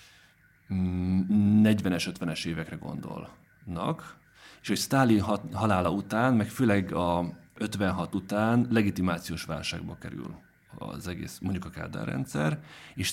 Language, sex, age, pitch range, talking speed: Hungarian, male, 30-49, 85-110 Hz, 110 wpm